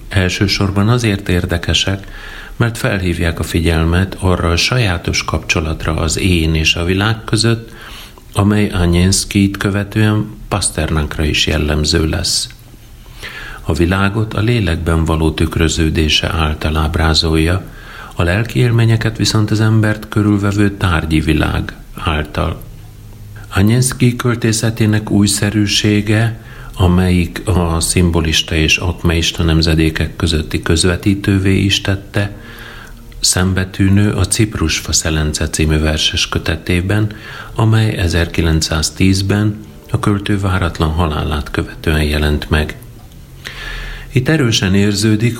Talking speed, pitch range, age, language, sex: 95 wpm, 80-105 Hz, 50-69, Hungarian, male